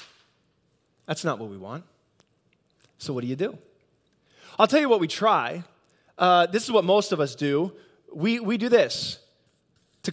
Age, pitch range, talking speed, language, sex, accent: 20-39, 155-210 Hz, 170 wpm, English, male, American